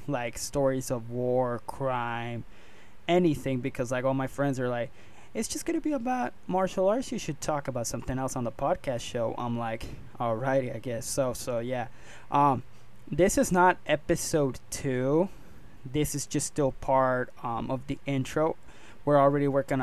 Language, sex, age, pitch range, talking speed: English, male, 20-39, 120-145 Hz, 170 wpm